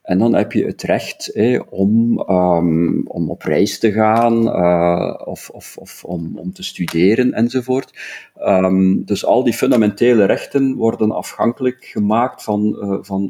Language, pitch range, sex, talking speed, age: Dutch, 95-115 Hz, male, 135 wpm, 50-69